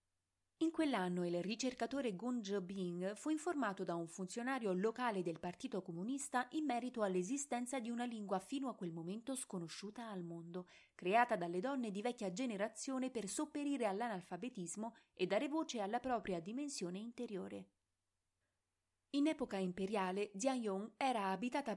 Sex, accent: female, native